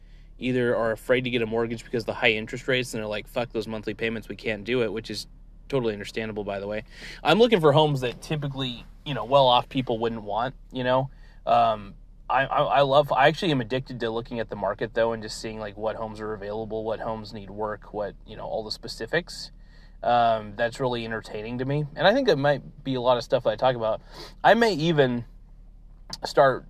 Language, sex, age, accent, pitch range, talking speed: English, male, 30-49, American, 110-135 Hz, 230 wpm